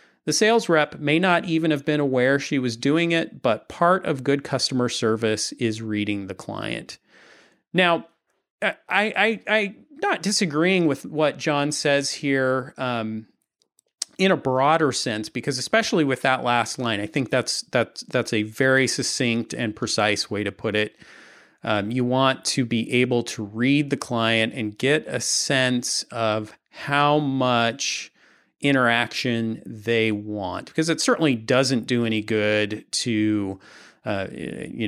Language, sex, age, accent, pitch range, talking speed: English, male, 30-49, American, 110-145 Hz, 155 wpm